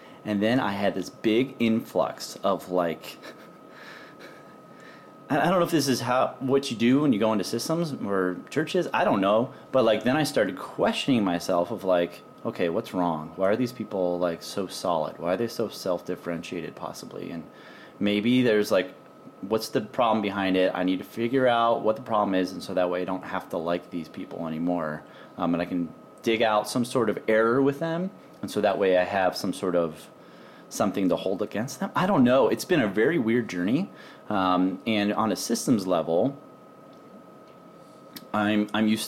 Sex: male